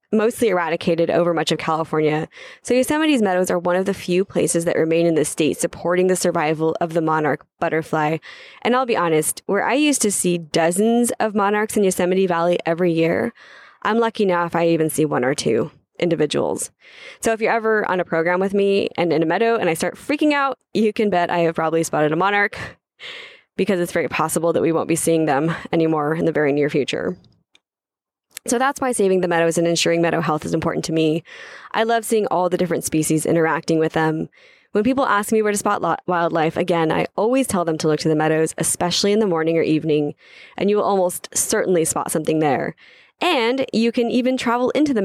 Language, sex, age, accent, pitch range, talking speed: English, female, 10-29, American, 165-220 Hz, 215 wpm